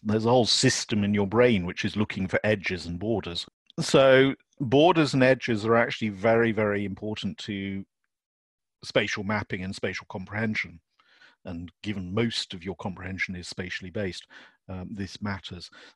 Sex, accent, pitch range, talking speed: male, British, 95-115 Hz, 155 wpm